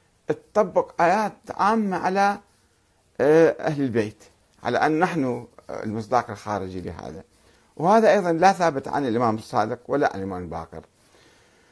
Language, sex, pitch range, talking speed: Arabic, male, 115-190 Hz, 120 wpm